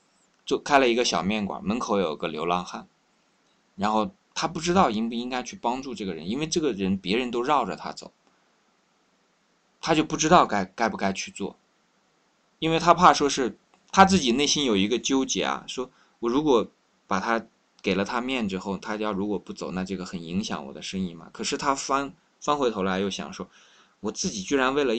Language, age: Chinese, 20-39